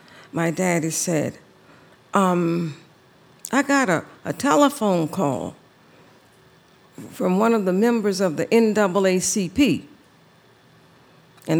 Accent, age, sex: American, 50-69, female